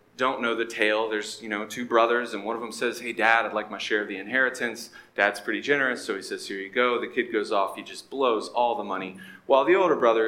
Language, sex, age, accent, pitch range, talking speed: English, male, 30-49, American, 105-140 Hz, 270 wpm